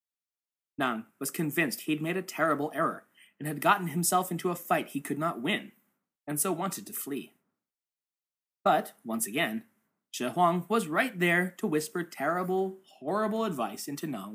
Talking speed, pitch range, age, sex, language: 165 wpm, 145-200 Hz, 20-39, male, English